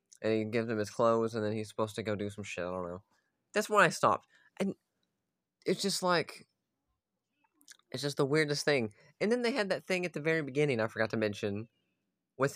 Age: 20-39